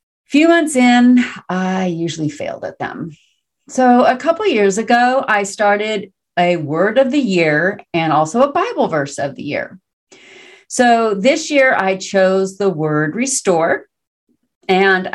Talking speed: 145 wpm